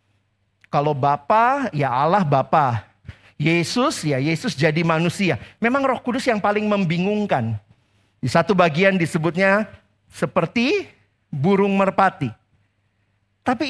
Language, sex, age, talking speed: Indonesian, male, 40-59, 105 wpm